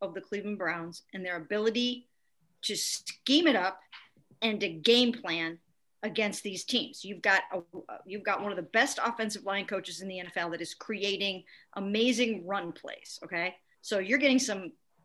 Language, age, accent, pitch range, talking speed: English, 40-59, American, 185-245 Hz, 170 wpm